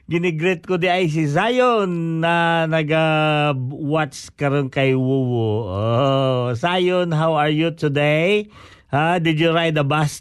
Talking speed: 140 wpm